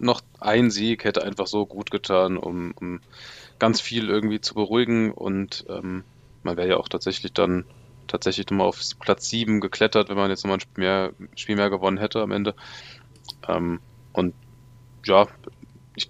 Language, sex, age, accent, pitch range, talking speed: German, male, 20-39, German, 95-115 Hz, 170 wpm